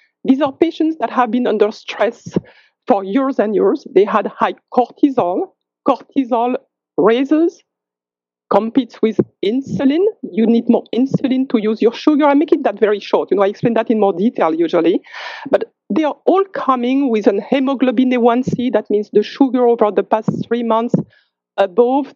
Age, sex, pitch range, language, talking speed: 50-69, female, 210-280 Hz, English, 170 wpm